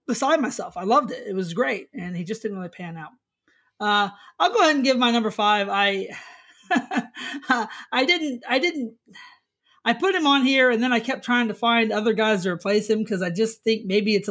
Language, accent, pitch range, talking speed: English, American, 205-255 Hz, 220 wpm